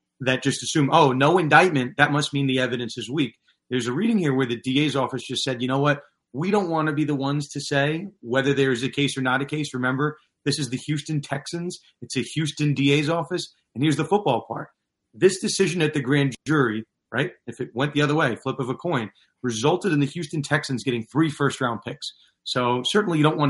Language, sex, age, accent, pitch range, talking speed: English, male, 30-49, American, 125-155 Hz, 230 wpm